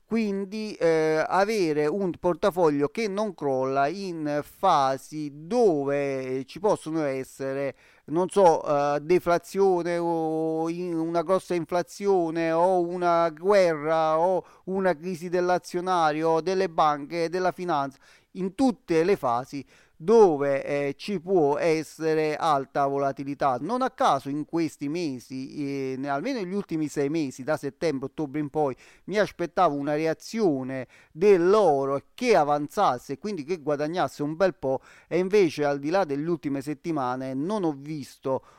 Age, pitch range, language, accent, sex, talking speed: 30-49, 140-180 Hz, Italian, native, male, 135 wpm